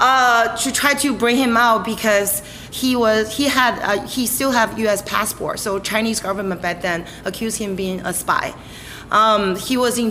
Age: 30-49